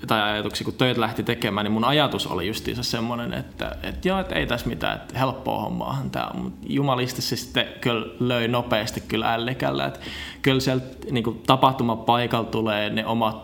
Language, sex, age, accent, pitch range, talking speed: Finnish, male, 20-39, native, 100-115 Hz, 170 wpm